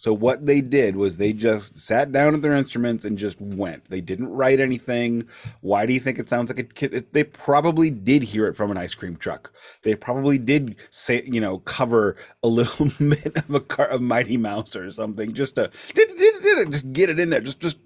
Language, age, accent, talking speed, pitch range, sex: English, 30-49, American, 235 wpm, 100-135 Hz, male